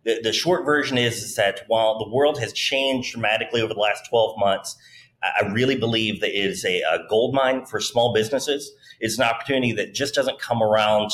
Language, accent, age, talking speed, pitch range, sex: English, American, 30-49, 205 wpm, 115-140 Hz, male